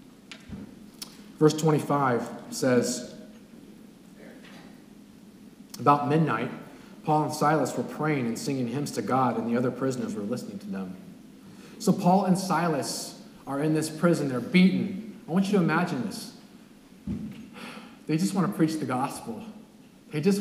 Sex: male